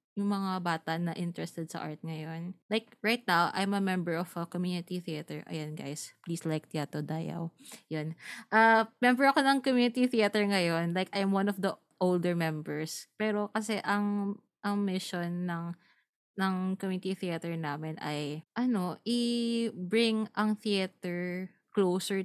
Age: 20-39